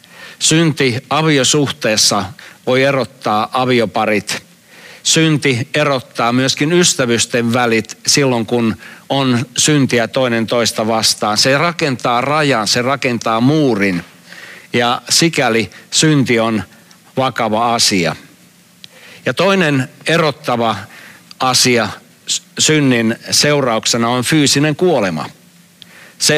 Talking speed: 90 wpm